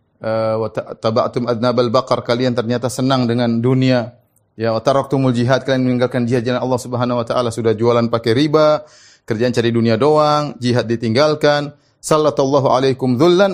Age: 30-49